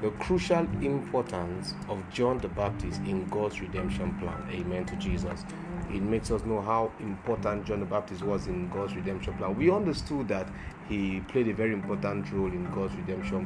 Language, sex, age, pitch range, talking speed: English, male, 30-49, 90-115 Hz, 180 wpm